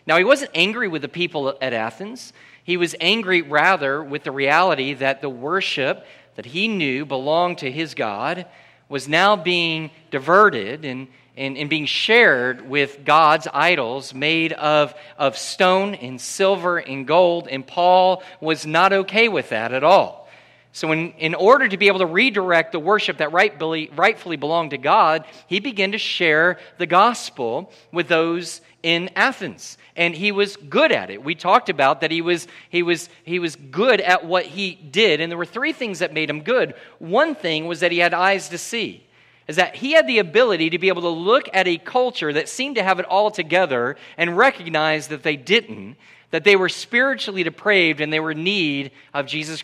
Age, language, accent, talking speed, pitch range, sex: 40-59, English, American, 190 wpm, 155-200 Hz, male